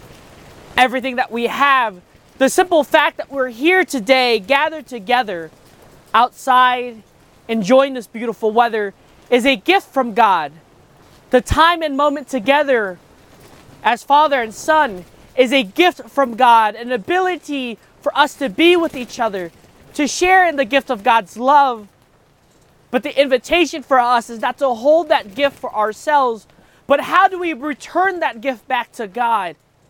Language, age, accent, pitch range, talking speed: English, 20-39, American, 235-310 Hz, 155 wpm